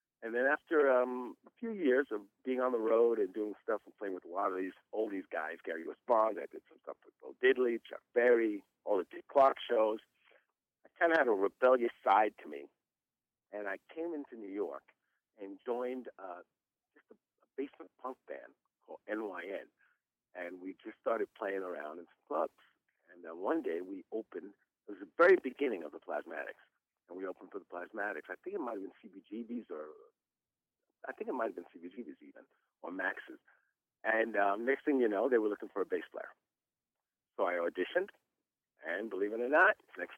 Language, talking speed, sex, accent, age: English, 200 wpm, male, American, 50-69